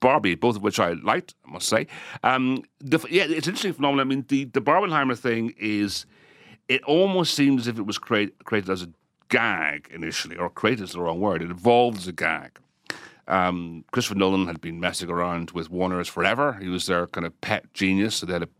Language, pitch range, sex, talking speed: English, 85-115 Hz, male, 195 wpm